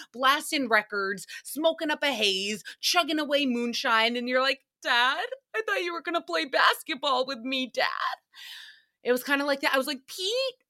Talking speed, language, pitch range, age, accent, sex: 190 wpm, English, 190-275 Hz, 30-49, American, female